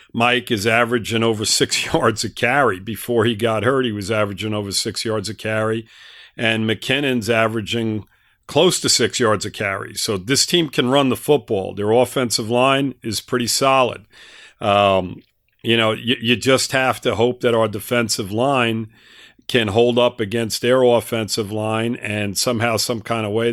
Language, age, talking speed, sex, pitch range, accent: English, 50-69, 175 wpm, male, 110-125 Hz, American